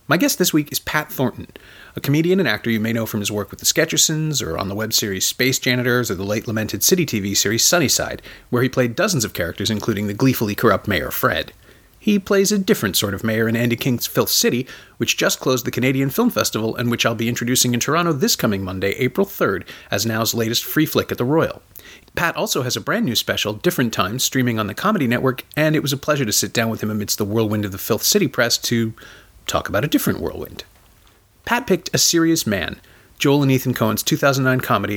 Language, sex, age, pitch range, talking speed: English, male, 40-59, 110-150 Hz, 230 wpm